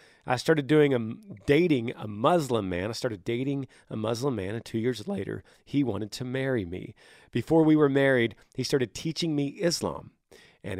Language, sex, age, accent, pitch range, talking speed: English, male, 40-59, American, 105-135 Hz, 185 wpm